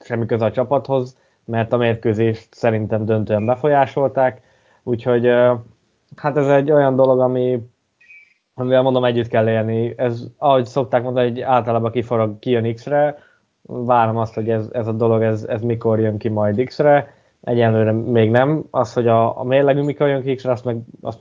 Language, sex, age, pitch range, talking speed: Hungarian, male, 20-39, 115-135 Hz, 165 wpm